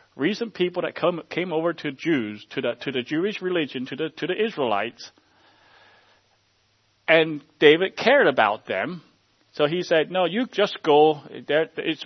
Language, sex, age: English, male, 40-59